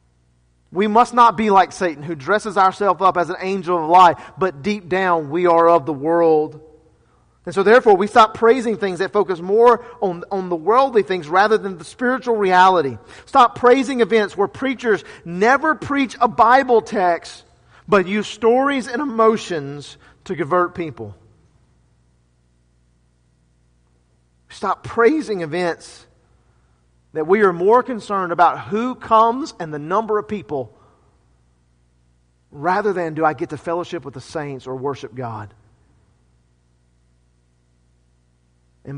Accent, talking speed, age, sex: American, 140 wpm, 40-59, male